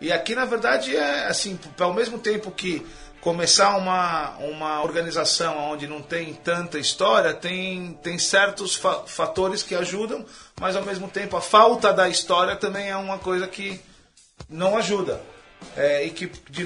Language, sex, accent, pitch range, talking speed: Portuguese, male, Brazilian, 160-195 Hz, 160 wpm